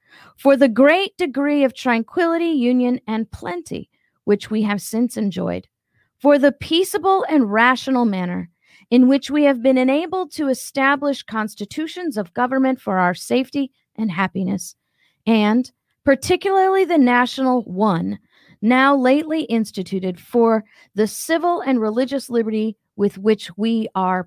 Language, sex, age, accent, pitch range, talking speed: English, female, 40-59, American, 205-280 Hz, 135 wpm